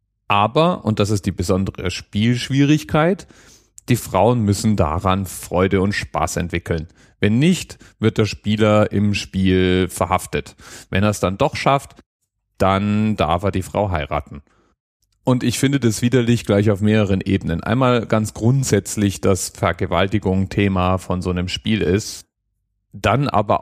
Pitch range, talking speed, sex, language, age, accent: 100-120 Hz, 145 wpm, male, German, 30-49, German